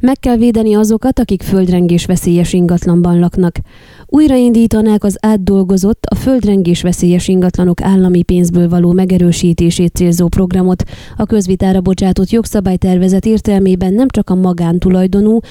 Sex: female